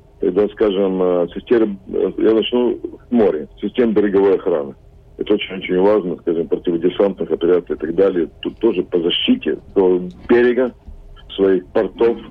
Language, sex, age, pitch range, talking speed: Russian, male, 50-69, 90-125 Hz, 130 wpm